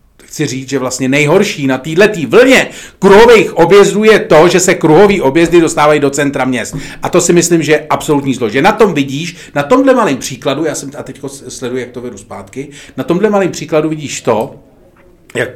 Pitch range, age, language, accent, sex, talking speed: 130-165 Hz, 40-59, Czech, native, male, 200 wpm